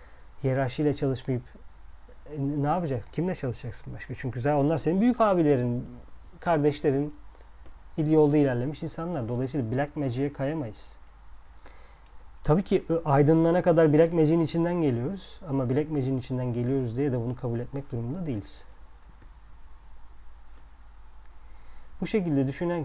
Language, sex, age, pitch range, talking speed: Turkish, male, 40-59, 115-150 Hz, 120 wpm